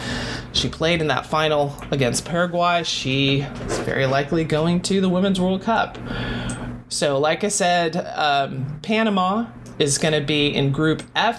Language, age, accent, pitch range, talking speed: English, 20-39, American, 140-180 Hz, 160 wpm